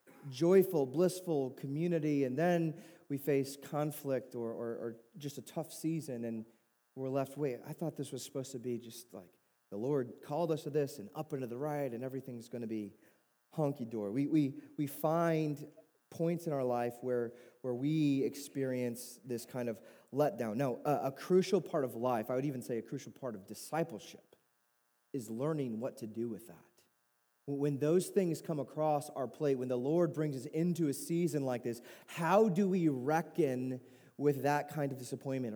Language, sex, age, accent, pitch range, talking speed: English, male, 30-49, American, 120-155 Hz, 190 wpm